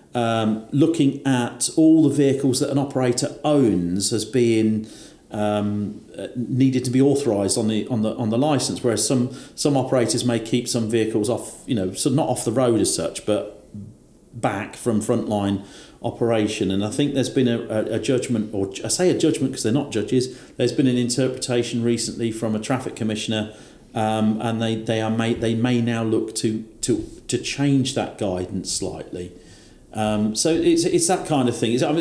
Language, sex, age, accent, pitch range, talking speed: English, male, 40-59, British, 105-135 Hz, 190 wpm